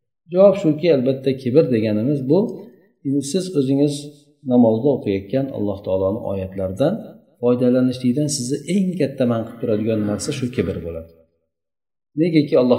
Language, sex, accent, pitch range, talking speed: Russian, male, Turkish, 100-140 Hz, 115 wpm